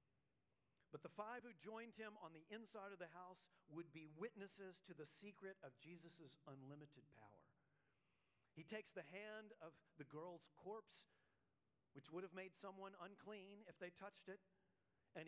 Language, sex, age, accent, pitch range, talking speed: English, male, 40-59, American, 160-215 Hz, 160 wpm